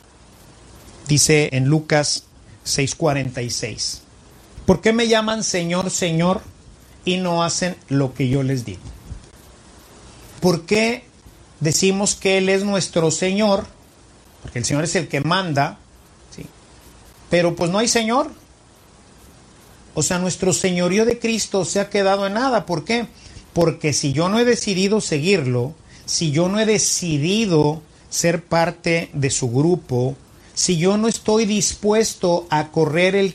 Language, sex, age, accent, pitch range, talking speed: Spanish, male, 50-69, Mexican, 145-195 Hz, 140 wpm